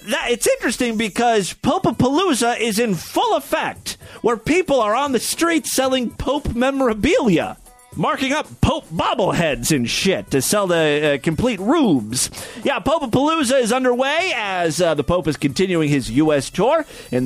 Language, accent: English, American